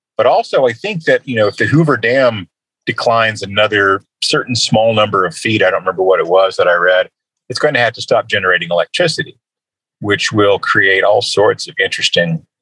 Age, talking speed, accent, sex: 40-59, 200 wpm, American, male